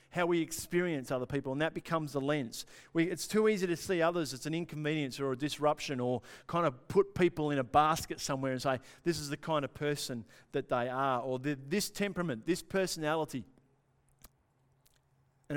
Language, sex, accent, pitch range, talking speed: English, male, Australian, 130-170 Hz, 190 wpm